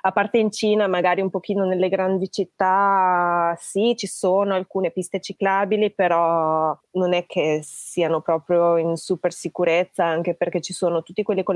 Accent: native